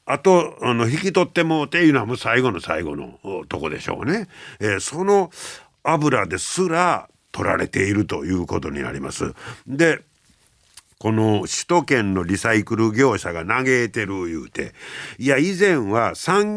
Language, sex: Japanese, male